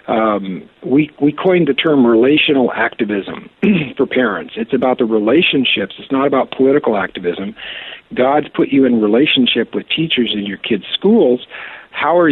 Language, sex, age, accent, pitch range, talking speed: English, male, 50-69, American, 115-145 Hz, 155 wpm